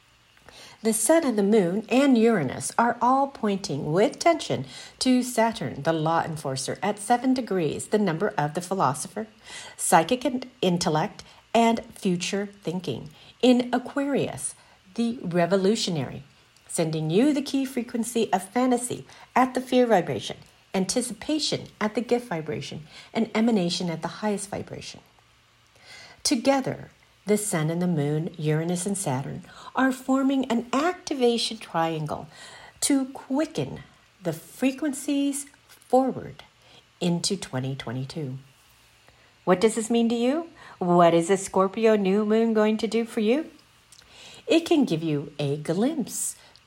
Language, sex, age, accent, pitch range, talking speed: English, female, 50-69, American, 165-250 Hz, 130 wpm